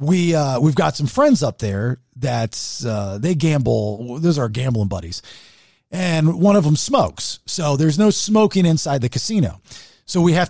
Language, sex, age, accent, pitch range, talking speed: English, male, 40-59, American, 115-180 Hz, 175 wpm